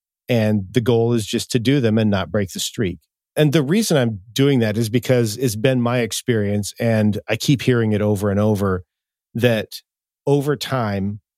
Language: English